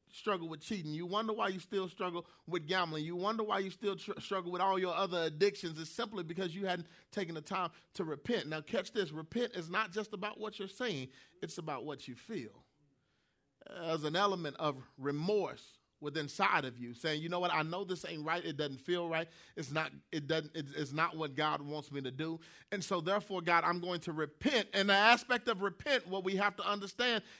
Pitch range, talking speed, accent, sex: 160-205 Hz, 225 wpm, American, male